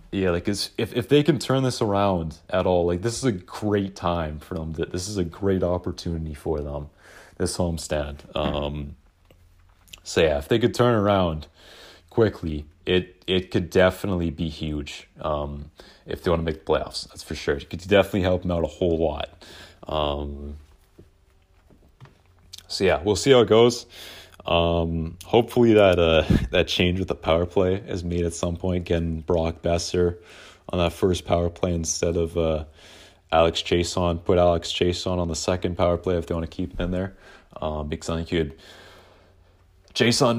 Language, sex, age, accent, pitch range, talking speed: English, male, 30-49, American, 85-95 Hz, 185 wpm